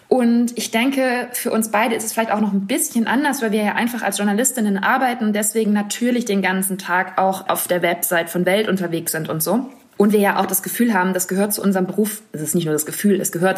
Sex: female